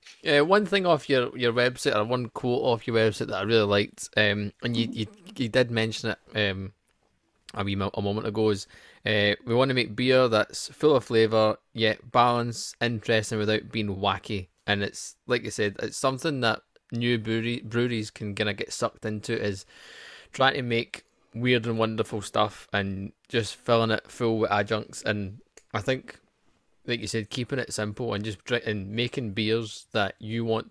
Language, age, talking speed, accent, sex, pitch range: English, 20-39, 195 wpm, British, male, 105-115 Hz